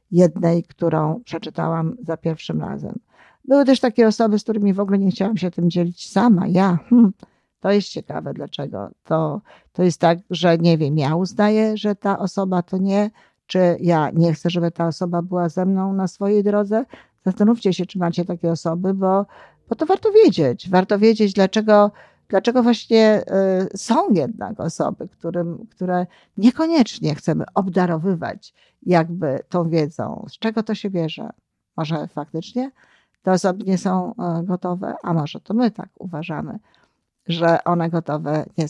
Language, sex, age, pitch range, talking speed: Polish, female, 50-69, 170-215 Hz, 155 wpm